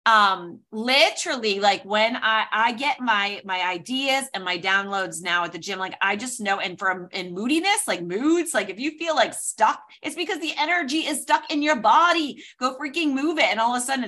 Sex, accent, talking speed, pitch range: female, American, 215 wpm, 190-250 Hz